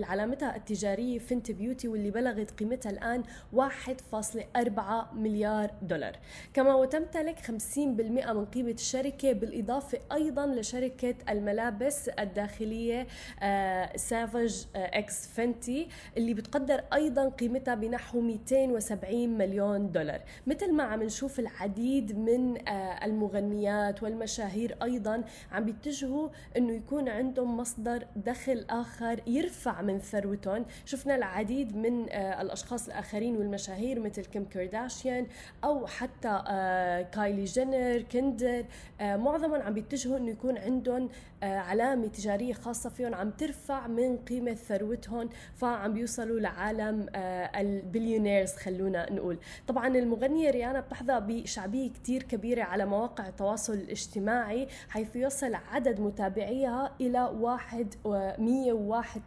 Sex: female